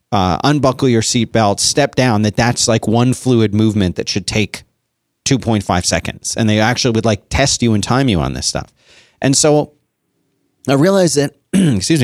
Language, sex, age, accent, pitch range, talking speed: English, male, 40-59, American, 105-140 Hz, 180 wpm